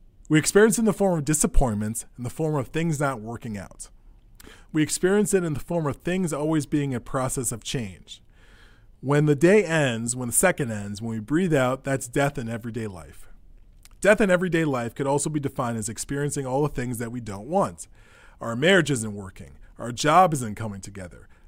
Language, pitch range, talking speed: English, 110-155 Hz, 205 wpm